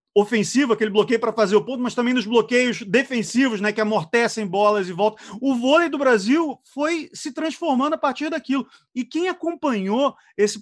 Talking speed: 180 wpm